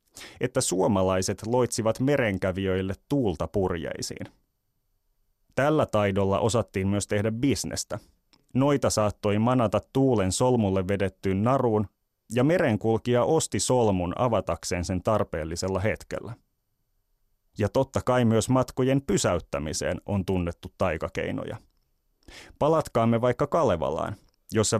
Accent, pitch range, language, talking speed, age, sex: native, 100-120 Hz, Finnish, 95 wpm, 30-49, male